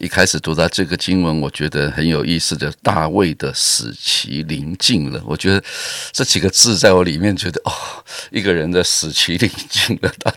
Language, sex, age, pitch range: Chinese, male, 50-69, 80-100 Hz